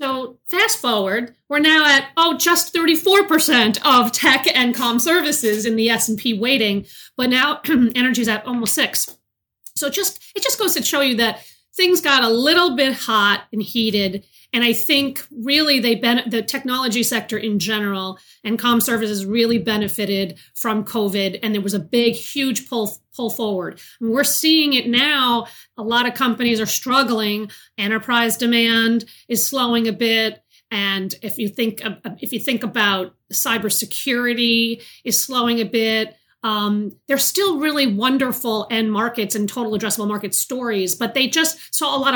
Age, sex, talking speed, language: 40-59, female, 175 wpm, English